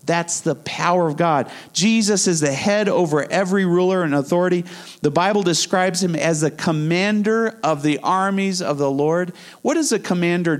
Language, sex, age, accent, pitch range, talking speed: English, male, 40-59, American, 150-195 Hz, 175 wpm